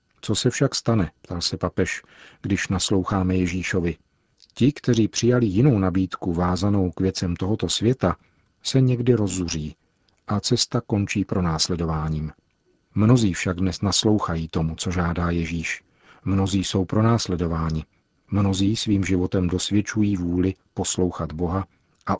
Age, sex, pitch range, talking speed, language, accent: 40-59, male, 90-105 Hz, 125 wpm, Czech, native